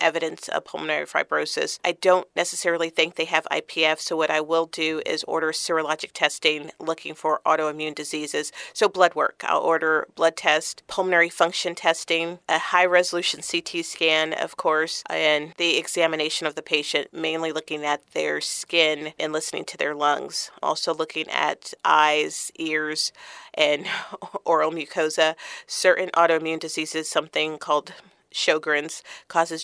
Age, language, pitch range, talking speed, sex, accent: 40-59, English, 155-170 Hz, 145 wpm, female, American